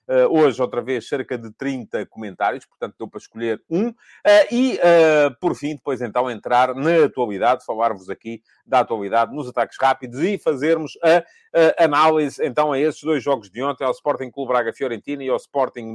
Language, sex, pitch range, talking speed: English, male, 125-165 Hz, 175 wpm